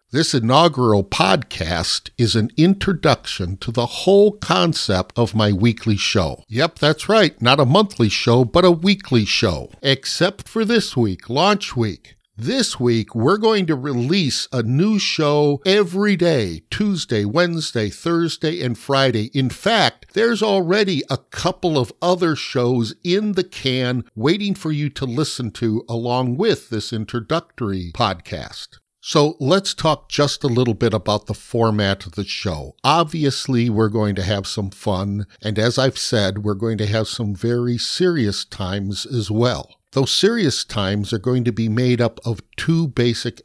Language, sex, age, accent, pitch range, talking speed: English, male, 60-79, American, 105-155 Hz, 160 wpm